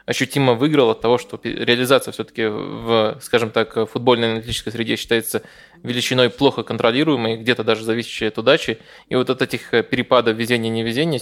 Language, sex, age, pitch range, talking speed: Russian, male, 20-39, 115-130 Hz, 150 wpm